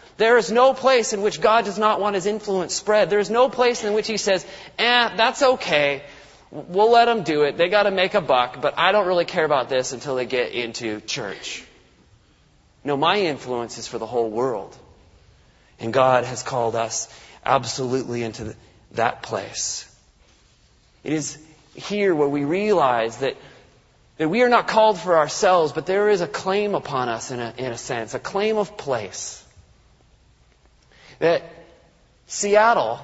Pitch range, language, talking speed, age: 145-210 Hz, English, 175 wpm, 30-49